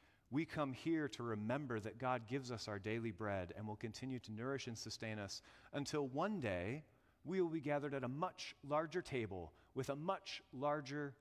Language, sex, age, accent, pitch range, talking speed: English, male, 30-49, American, 110-140 Hz, 195 wpm